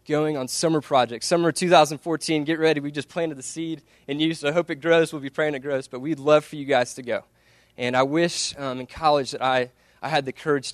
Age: 20-39